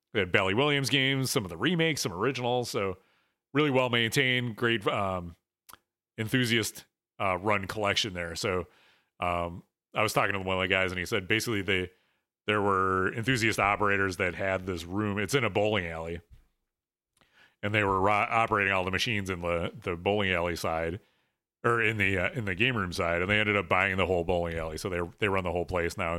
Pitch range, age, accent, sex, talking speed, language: 95-125 Hz, 30-49, American, male, 205 wpm, English